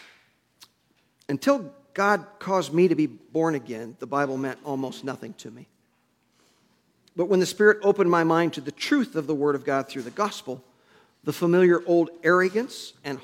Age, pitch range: 50-69, 140-185 Hz